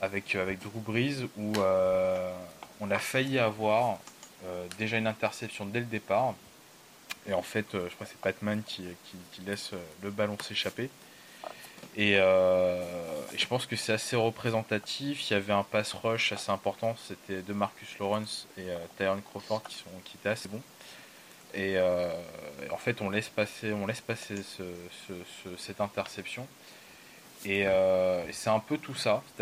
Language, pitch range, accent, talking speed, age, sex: English, 95-110 Hz, French, 170 wpm, 20-39, male